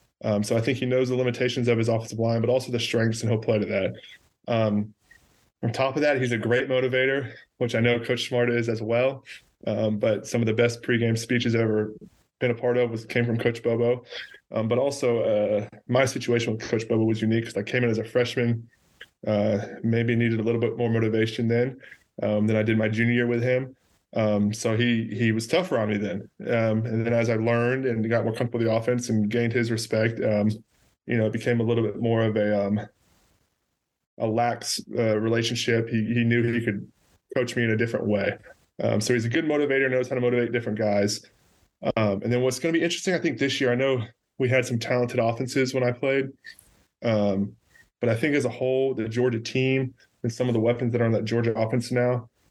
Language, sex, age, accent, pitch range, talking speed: English, male, 20-39, American, 110-125 Hz, 230 wpm